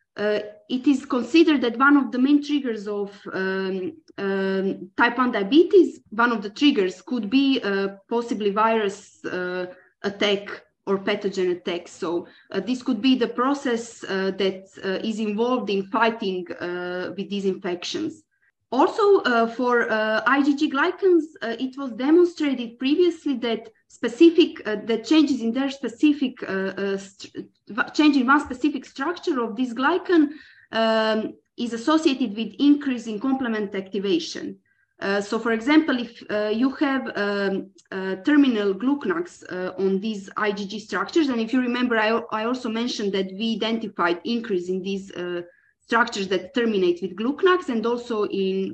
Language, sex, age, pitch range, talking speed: English, female, 20-39, 200-280 Hz, 155 wpm